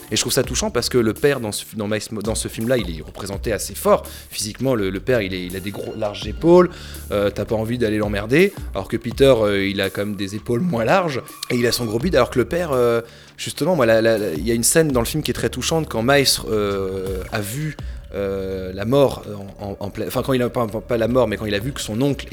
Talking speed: 270 wpm